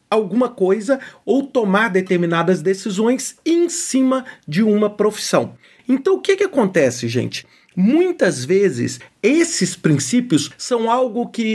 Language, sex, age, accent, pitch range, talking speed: Portuguese, male, 50-69, Brazilian, 150-220 Hz, 125 wpm